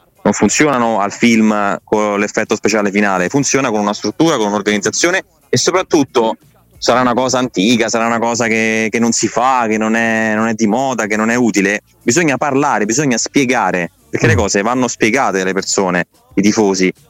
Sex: male